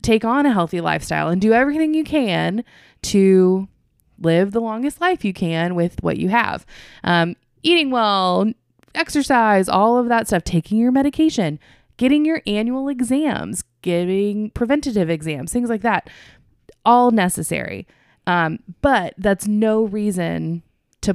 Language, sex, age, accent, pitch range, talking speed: English, female, 20-39, American, 165-225 Hz, 140 wpm